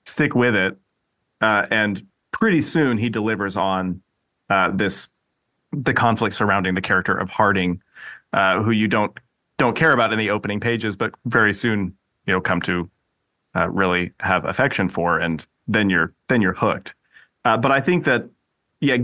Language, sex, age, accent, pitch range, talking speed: English, male, 30-49, American, 95-125 Hz, 170 wpm